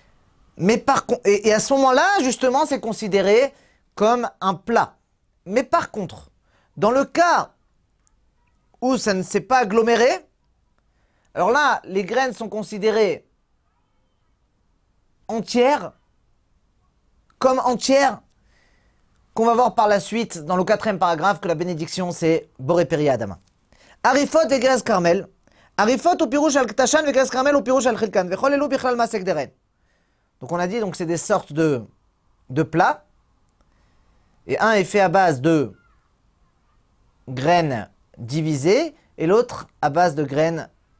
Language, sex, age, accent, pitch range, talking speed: French, male, 30-49, French, 175-265 Hz, 145 wpm